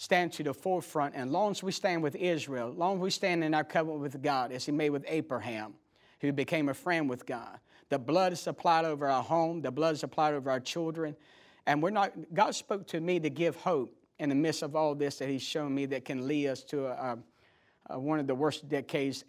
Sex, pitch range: male, 140-170 Hz